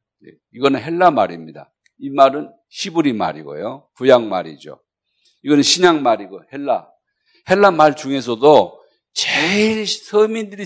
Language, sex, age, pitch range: Korean, male, 50-69, 115-180 Hz